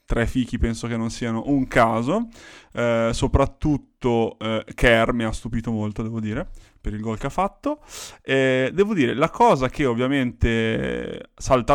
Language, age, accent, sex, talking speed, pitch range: Italian, 20-39, native, male, 165 wpm, 110-130 Hz